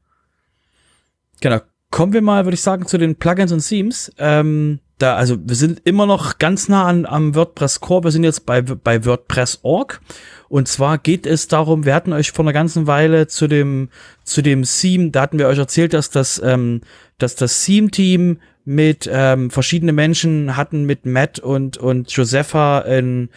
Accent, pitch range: German, 130-160 Hz